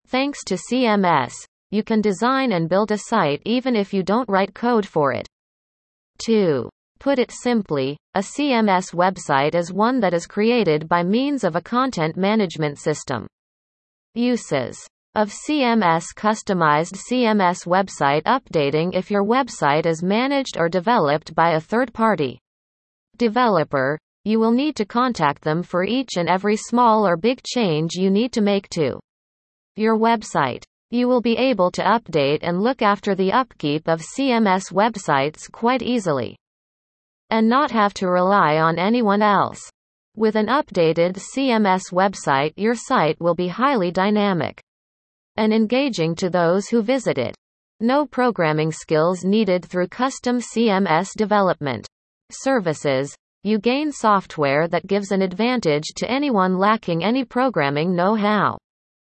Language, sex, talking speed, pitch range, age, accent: English, female, 140 wpm, 170-235 Hz, 30-49, American